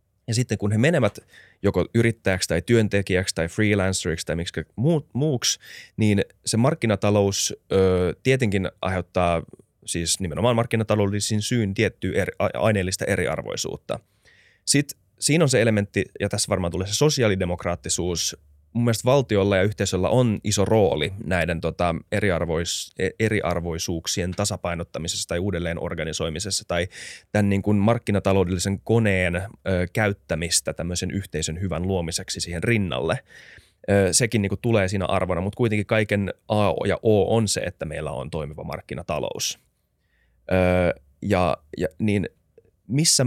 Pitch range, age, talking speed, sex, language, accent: 90-110 Hz, 20-39, 115 wpm, male, Finnish, native